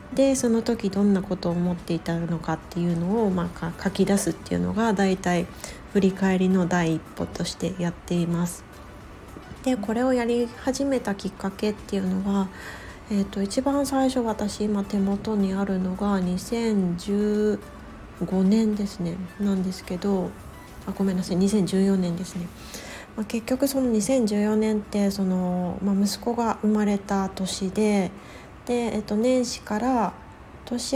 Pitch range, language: 185-230 Hz, Japanese